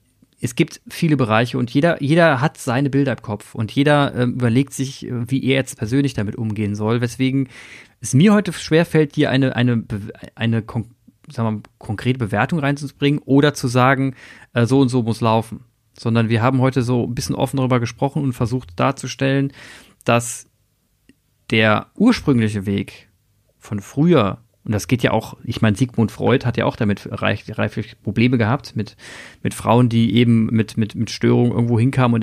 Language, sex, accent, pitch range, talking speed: German, male, German, 115-135 Hz, 180 wpm